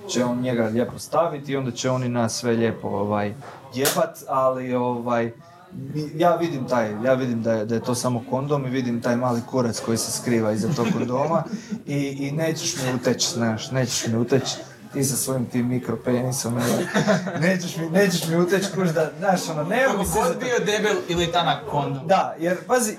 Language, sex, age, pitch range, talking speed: Croatian, male, 30-49, 125-190 Hz, 190 wpm